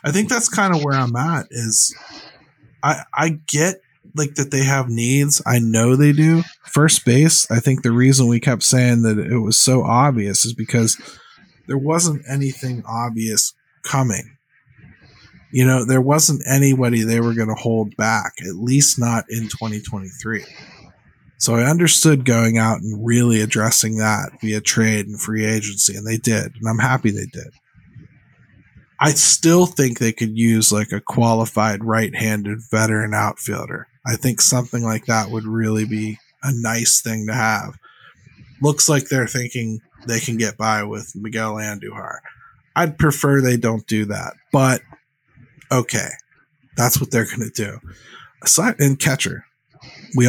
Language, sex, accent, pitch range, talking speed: English, male, American, 110-140 Hz, 160 wpm